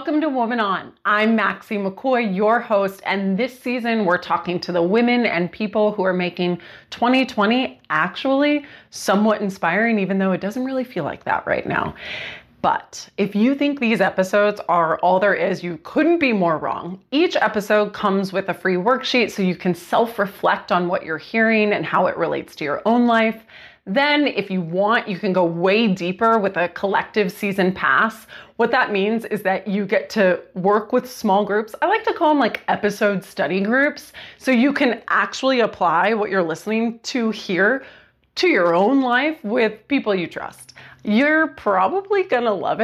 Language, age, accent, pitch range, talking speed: English, 30-49, American, 190-245 Hz, 185 wpm